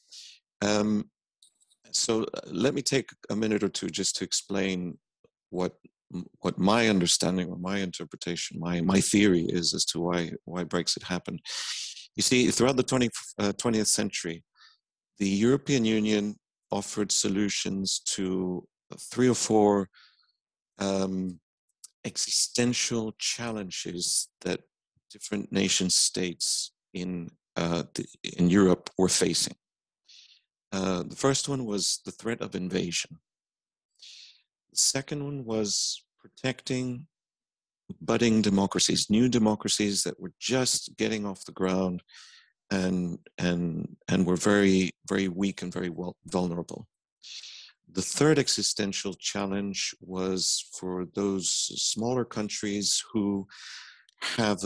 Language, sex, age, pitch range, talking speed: English, male, 50-69, 90-110 Hz, 115 wpm